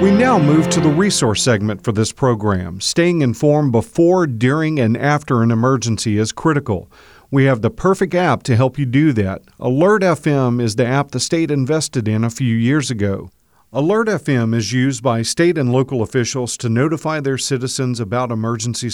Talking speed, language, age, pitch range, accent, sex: 185 wpm, English, 50-69, 115-145 Hz, American, male